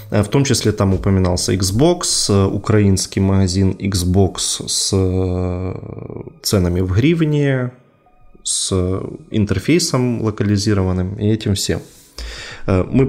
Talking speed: 90 wpm